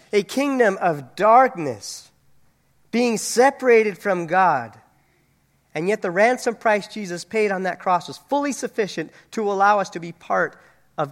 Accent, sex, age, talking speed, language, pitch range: American, male, 40-59, 150 wpm, English, 165-215 Hz